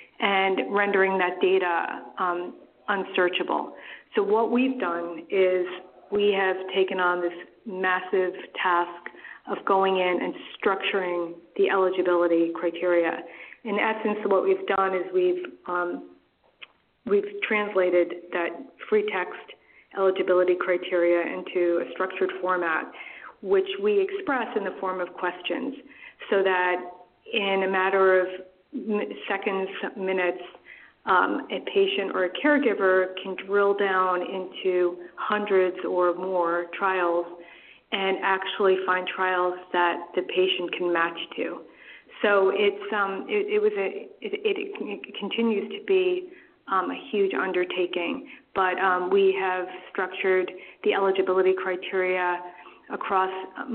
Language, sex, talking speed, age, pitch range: English, female, 125 wpm, 40-59, 180-205 Hz